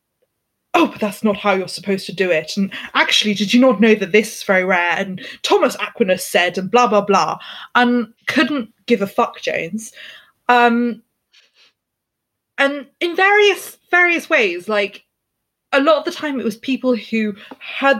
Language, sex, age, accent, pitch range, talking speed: English, female, 20-39, British, 195-250 Hz, 170 wpm